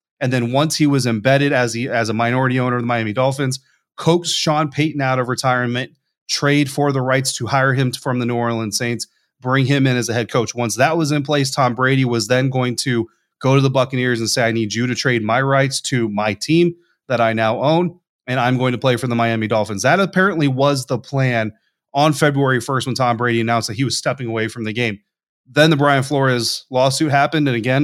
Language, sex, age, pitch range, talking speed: English, male, 30-49, 115-140 Hz, 235 wpm